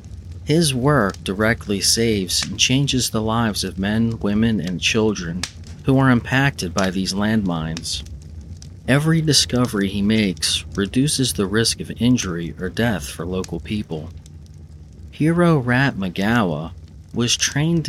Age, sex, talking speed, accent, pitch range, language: 40-59, male, 125 wpm, American, 85-120 Hz, English